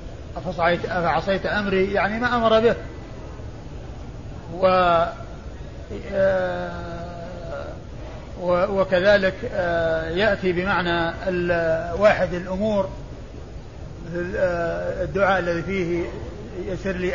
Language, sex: Arabic, male